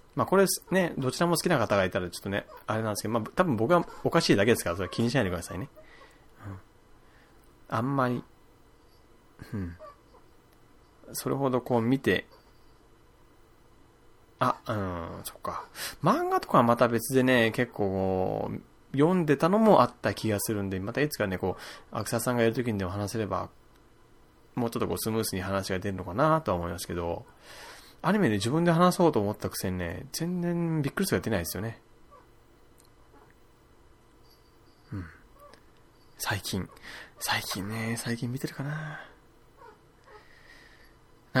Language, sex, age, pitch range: Japanese, male, 20-39, 100-150 Hz